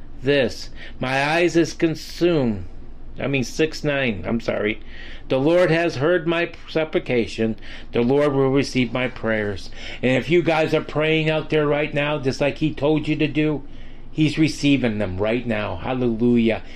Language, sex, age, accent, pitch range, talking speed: English, male, 40-59, American, 125-165 Hz, 165 wpm